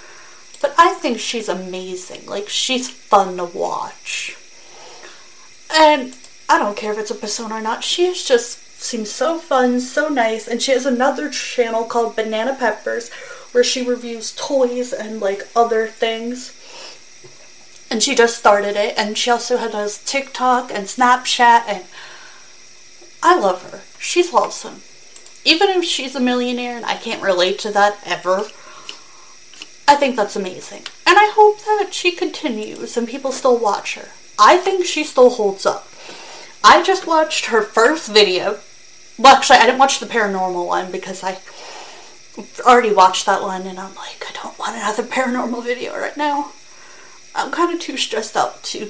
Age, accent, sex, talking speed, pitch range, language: 30-49, American, female, 160 wpm, 210-280 Hz, English